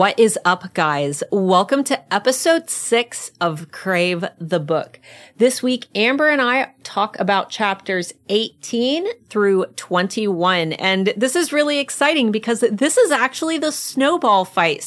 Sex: female